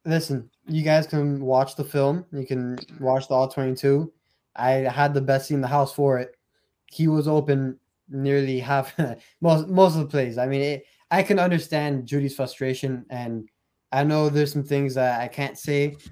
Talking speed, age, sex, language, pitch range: 185 wpm, 10-29, male, English, 130-145 Hz